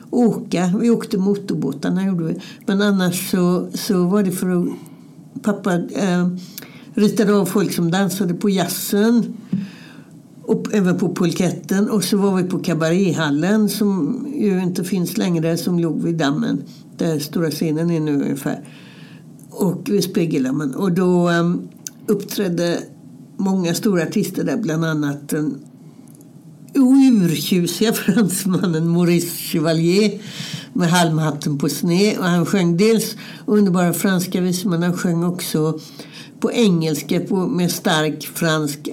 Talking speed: 135 wpm